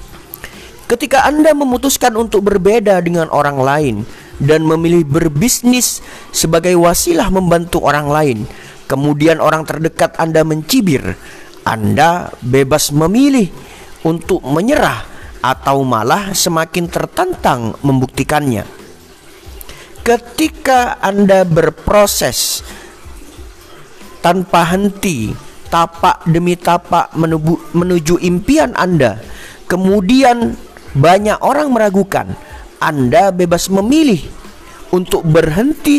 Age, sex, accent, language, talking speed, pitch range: 40-59, male, native, Indonesian, 85 wpm, 140-200 Hz